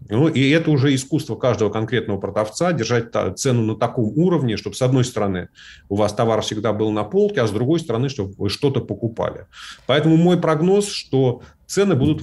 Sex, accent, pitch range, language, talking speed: male, native, 105-140 Hz, Russian, 180 wpm